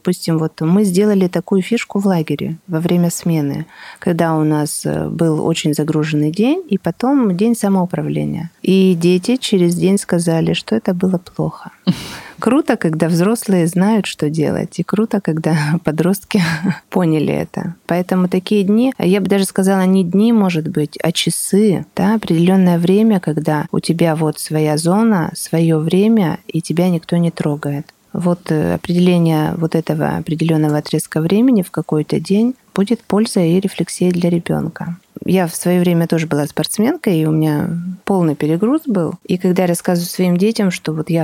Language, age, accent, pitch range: Russian, 30-49, native, 160-195 Hz